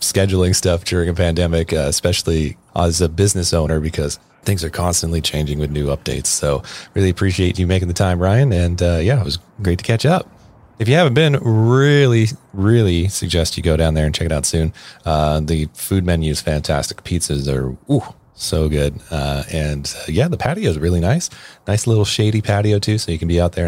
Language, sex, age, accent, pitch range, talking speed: English, male, 30-49, American, 80-110 Hz, 210 wpm